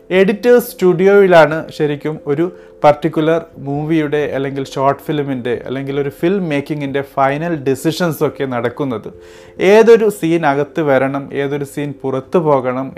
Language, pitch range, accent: Malayalam, 135-165 Hz, native